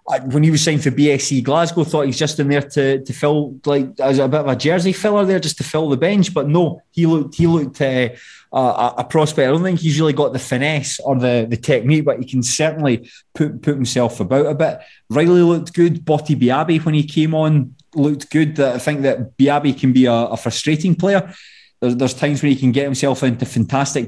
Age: 20-39